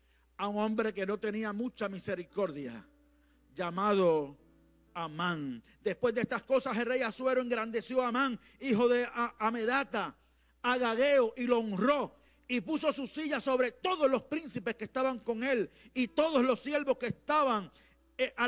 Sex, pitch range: male, 150-250 Hz